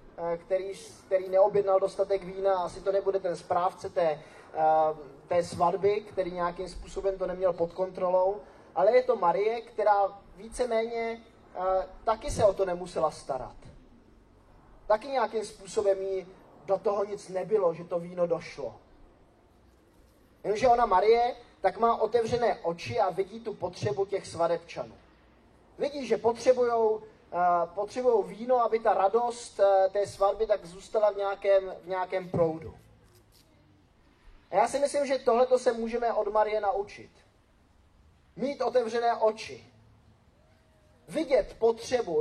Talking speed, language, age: 130 wpm, Czech, 20-39